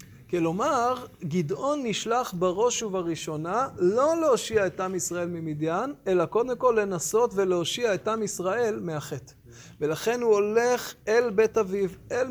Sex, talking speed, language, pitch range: male, 130 wpm, Hebrew, 170-230 Hz